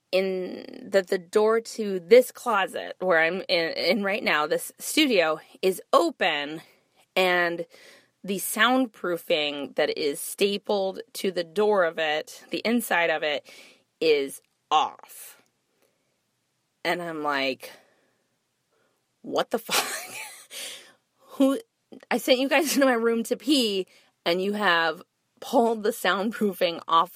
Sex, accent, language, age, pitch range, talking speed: female, American, English, 20-39, 175-245 Hz, 125 wpm